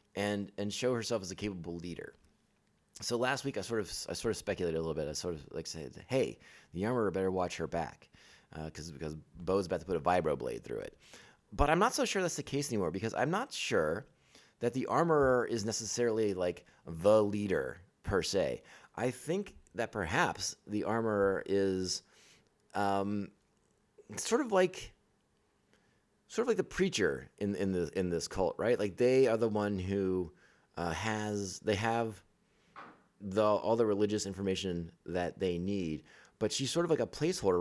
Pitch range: 95-115 Hz